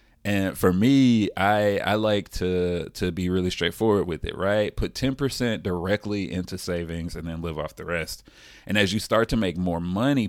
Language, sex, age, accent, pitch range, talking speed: English, male, 30-49, American, 85-100 Hz, 200 wpm